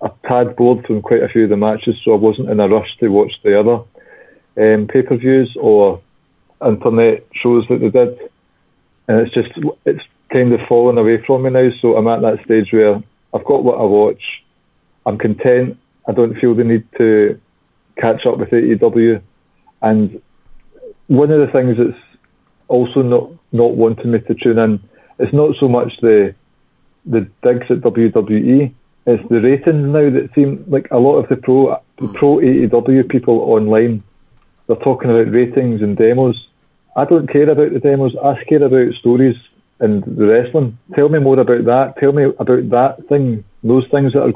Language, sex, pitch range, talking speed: English, male, 110-135 Hz, 180 wpm